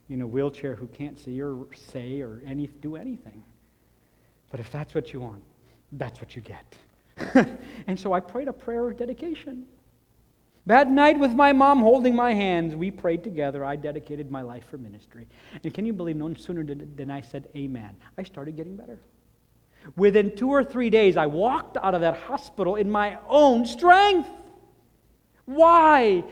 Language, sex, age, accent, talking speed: English, male, 50-69, American, 175 wpm